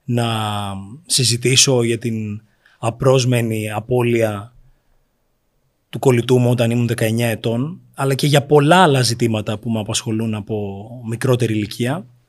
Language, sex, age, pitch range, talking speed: Greek, male, 30-49, 120-160 Hz, 120 wpm